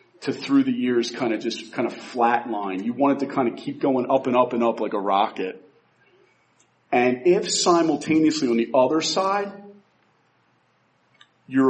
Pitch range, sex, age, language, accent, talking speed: 125-160 Hz, male, 40-59, English, American, 175 wpm